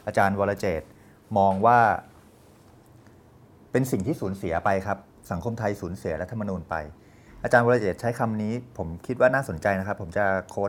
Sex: male